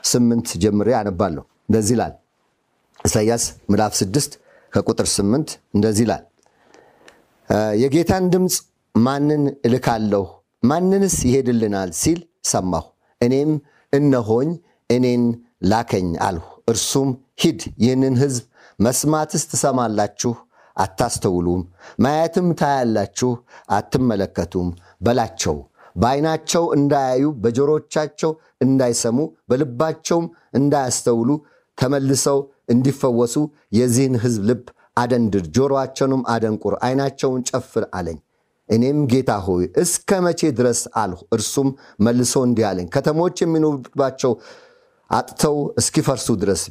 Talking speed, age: 85 wpm, 50-69